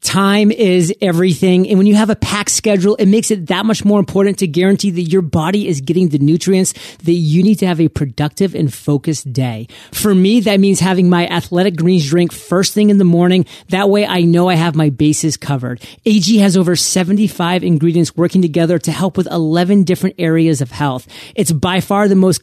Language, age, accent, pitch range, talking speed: English, 30-49, American, 155-195 Hz, 210 wpm